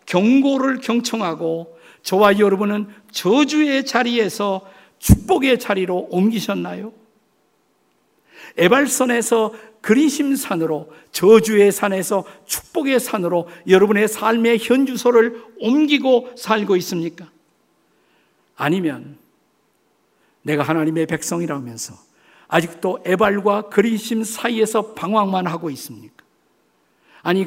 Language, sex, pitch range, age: Korean, male, 170-235 Hz, 50-69